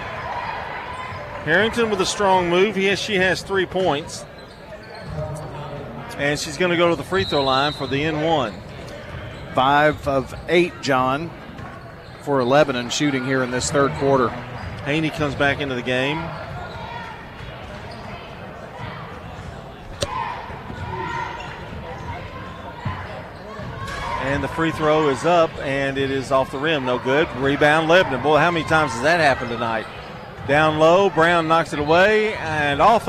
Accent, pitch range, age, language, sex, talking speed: American, 140-180 Hz, 40-59, English, male, 130 wpm